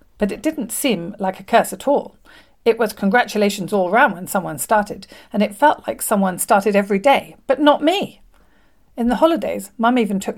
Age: 40-59